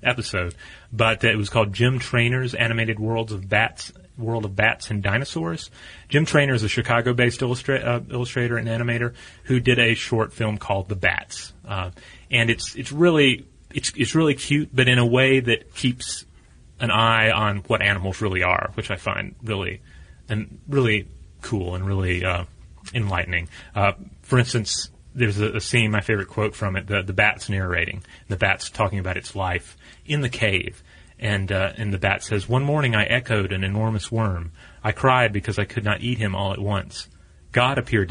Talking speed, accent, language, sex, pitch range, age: 185 wpm, American, English, male, 100-125 Hz, 30-49